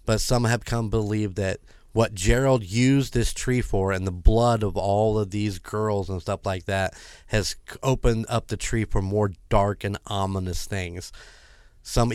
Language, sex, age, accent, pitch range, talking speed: English, male, 30-49, American, 95-115 Hz, 180 wpm